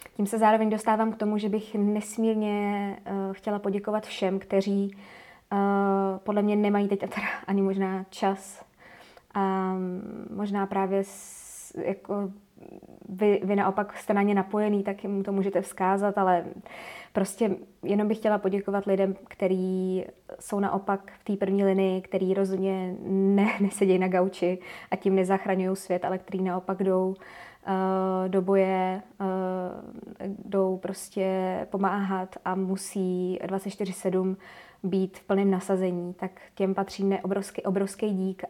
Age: 20-39